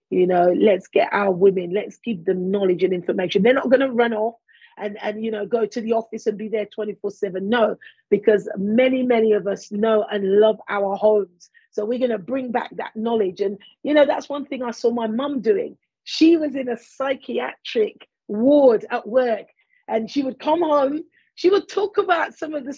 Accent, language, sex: British, English, female